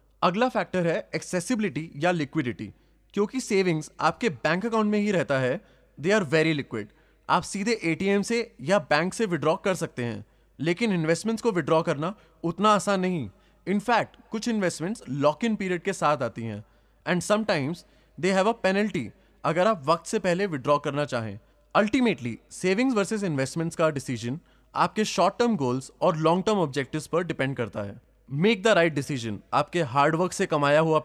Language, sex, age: English, male, 20-39